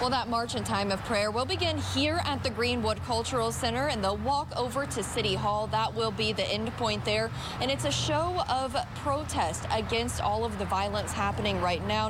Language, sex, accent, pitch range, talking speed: English, female, American, 195-240 Hz, 215 wpm